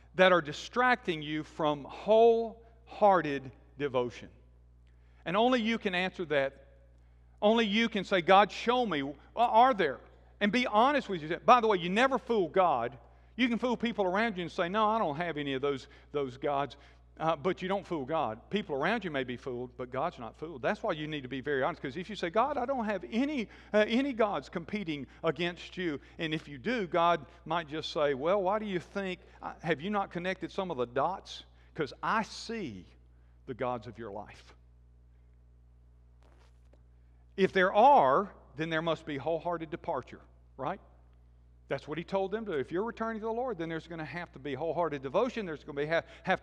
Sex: male